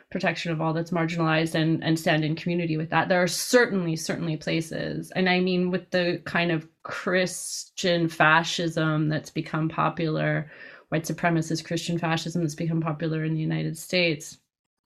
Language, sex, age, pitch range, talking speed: English, female, 30-49, 150-175 Hz, 160 wpm